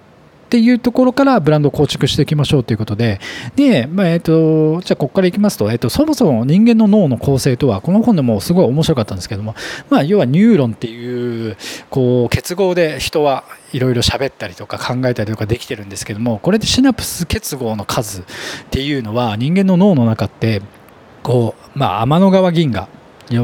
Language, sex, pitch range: Japanese, male, 115-185 Hz